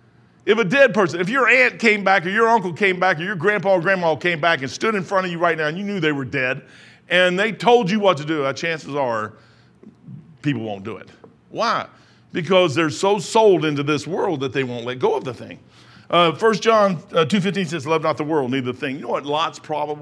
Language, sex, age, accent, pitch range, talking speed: English, male, 50-69, American, 120-170 Hz, 245 wpm